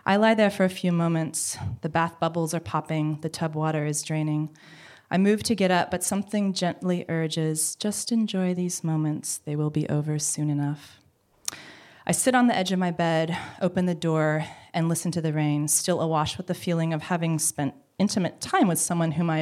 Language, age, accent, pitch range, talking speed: English, 20-39, American, 150-180 Hz, 205 wpm